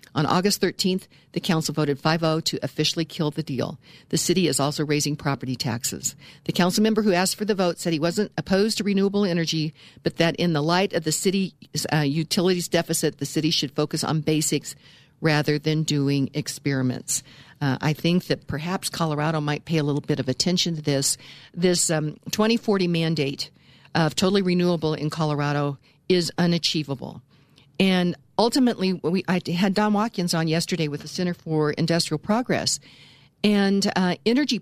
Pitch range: 150-190 Hz